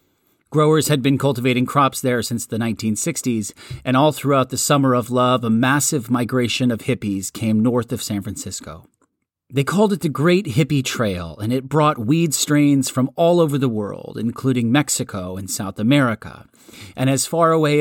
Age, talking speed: 40-59, 175 wpm